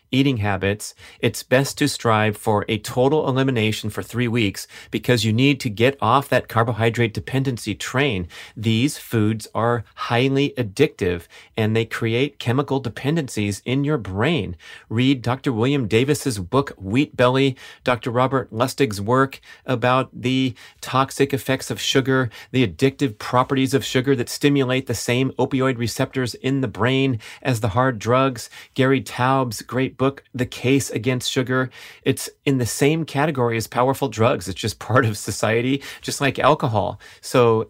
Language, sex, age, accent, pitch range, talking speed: English, male, 30-49, American, 115-135 Hz, 155 wpm